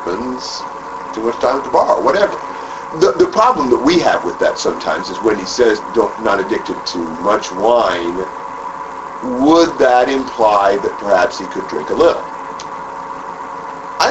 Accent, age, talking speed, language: American, 50-69, 155 wpm, English